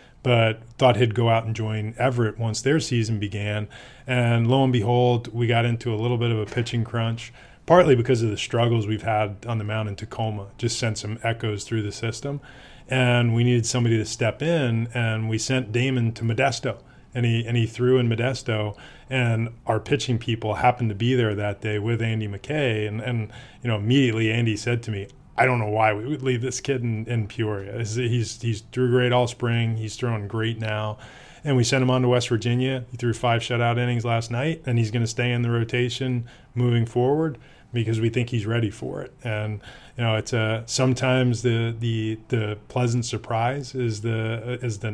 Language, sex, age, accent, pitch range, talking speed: English, male, 20-39, American, 110-125 Hz, 210 wpm